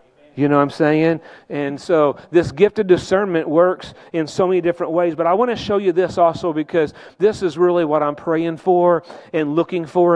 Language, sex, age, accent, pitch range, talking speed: English, male, 40-59, American, 185-260 Hz, 215 wpm